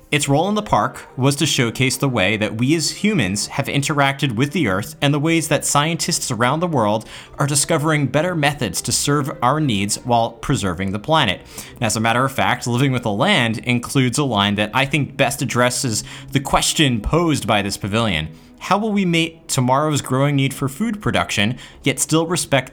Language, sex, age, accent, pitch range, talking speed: English, male, 30-49, American, 115-155 Hz, 200 wpm